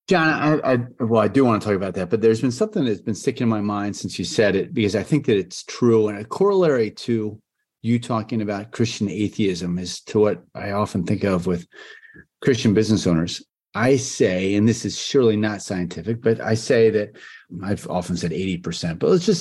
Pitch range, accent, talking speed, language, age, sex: 105-135 Hz, American, 210 wpm, English, 40-59, male